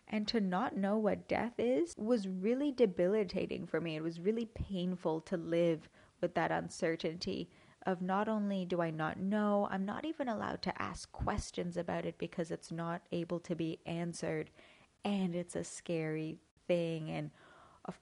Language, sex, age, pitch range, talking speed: English, female, 20-39, 160-190 Hz, 170 wpm